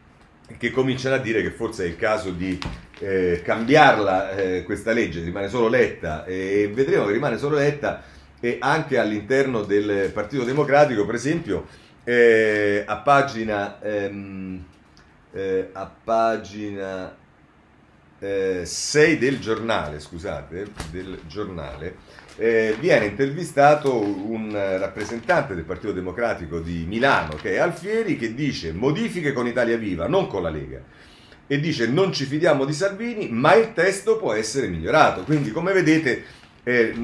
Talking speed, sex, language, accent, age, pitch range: 130 wpm, male, Italian, native, 40-59, 95-140 Hz